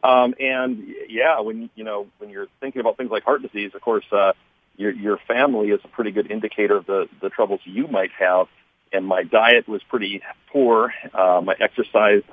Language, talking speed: English, 200 wpm